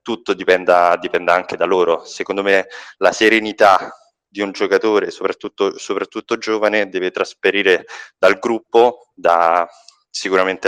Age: 20-39